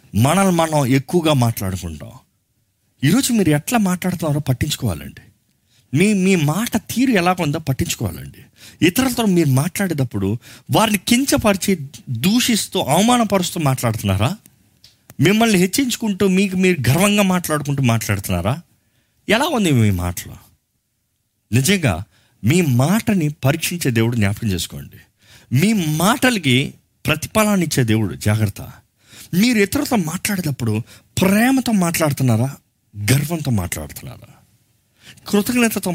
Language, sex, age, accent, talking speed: Telugu, male, 50-69, native, 95 wpm